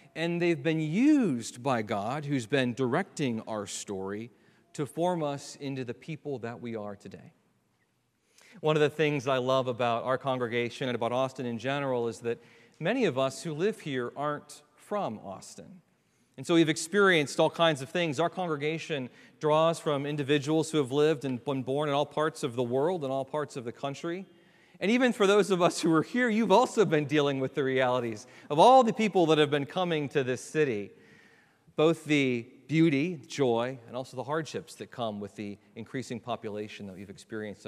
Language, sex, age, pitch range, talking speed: English, male, 40-59, 115-155 Hz, 195 wpm